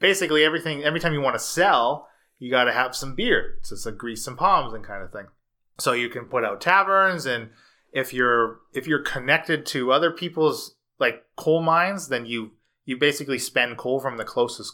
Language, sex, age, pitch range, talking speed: English, male, 30-49, 115-150 Hz, 210 wpm